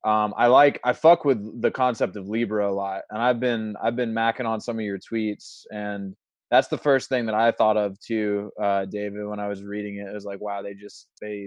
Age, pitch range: 20-39, 100-115 Hz